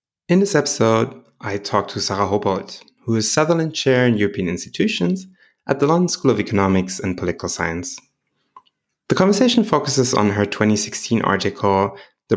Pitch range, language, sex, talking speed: 95-145 Hz, English, male, 155 wpm